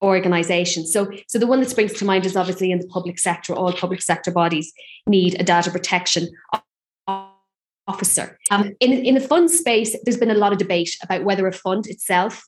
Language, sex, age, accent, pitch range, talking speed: English, female, 20-39, Irish, 185-210 Hz, 195 wpm